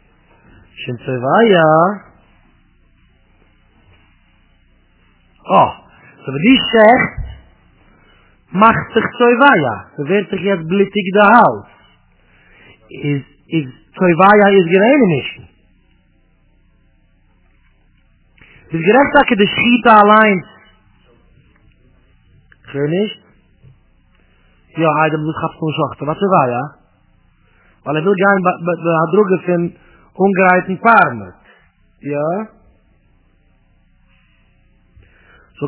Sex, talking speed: male, 60 wpm